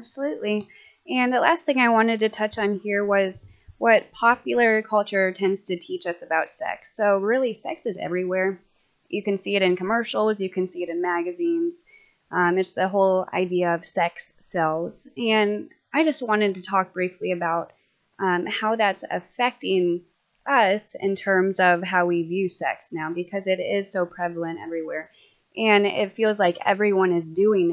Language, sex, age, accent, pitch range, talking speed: English, female, 20-39, American, 175-210 Hz, 175 wpm